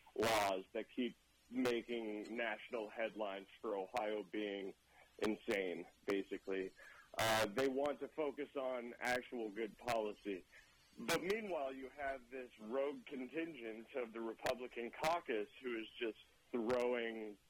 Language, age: English, 40-59